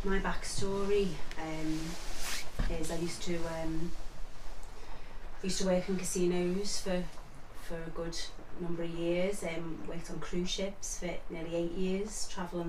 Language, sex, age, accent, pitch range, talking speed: English, female, 30-49, British, 155-175 Hz, 140 wpm